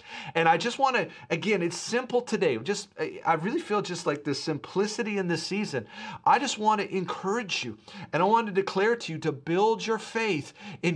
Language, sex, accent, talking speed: English, male, American, 210 wpm